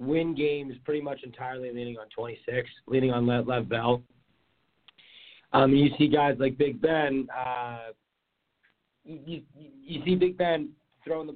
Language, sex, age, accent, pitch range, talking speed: English, male, 30-49, American, 125-150 Hz, 155 wpm